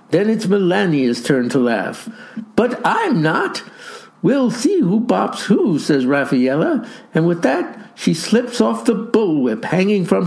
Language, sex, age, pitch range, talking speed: English, male, 60-79, 170-220 Hz, 150 wpm